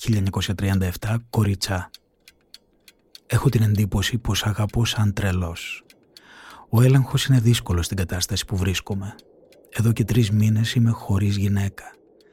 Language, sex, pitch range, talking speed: Greek, male, 105-125 Hz, 115 wpm